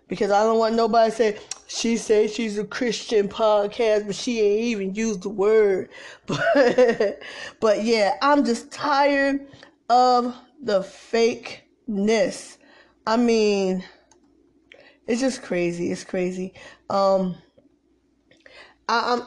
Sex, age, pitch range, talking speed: female, 10-29, 200-255 Hz, 115 wpm